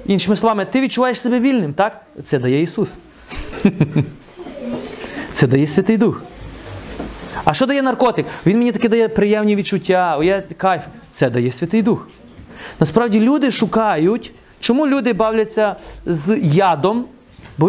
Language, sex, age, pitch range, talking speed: Ukrainian, male, 30-49, 165-225 Hz, 135 wpm